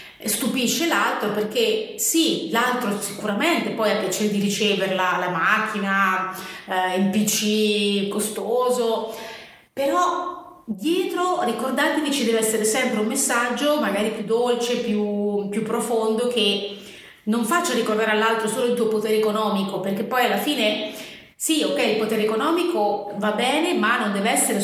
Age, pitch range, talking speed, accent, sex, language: 30-49, 205-245 Hz, 140 wpm, native, female, Italian